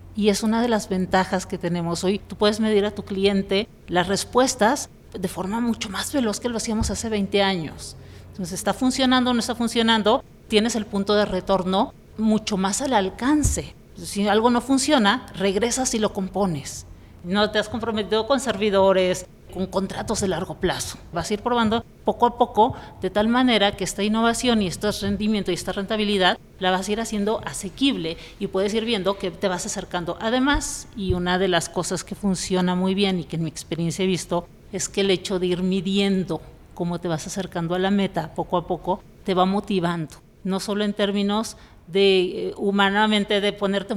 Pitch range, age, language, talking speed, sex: 185-220 Hz, 40-59, English, 190 wpm, female